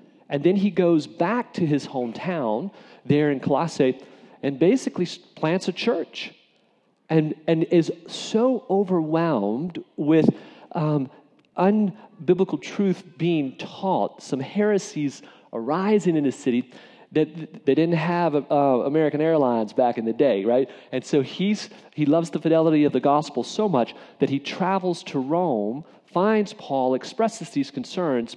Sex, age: male, 40-59